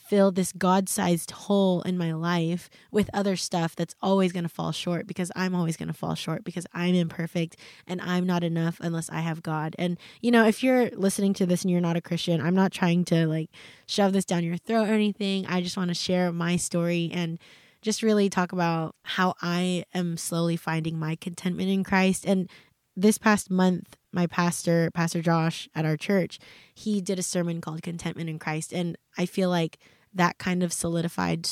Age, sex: 20-39, female